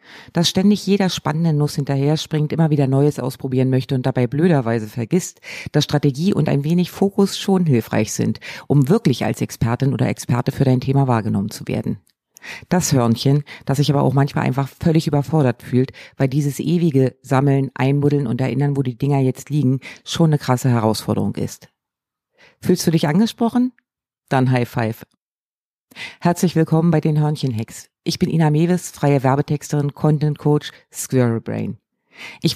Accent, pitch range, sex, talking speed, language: German, 130-160 Hz, female, 160 wpm, German